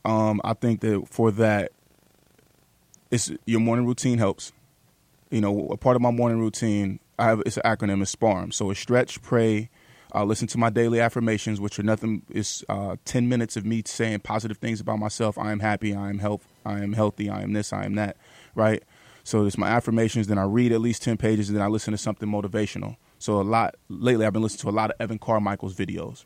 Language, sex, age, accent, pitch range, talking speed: English, male, 20-39, American, 105-115 Hz, 225 wpm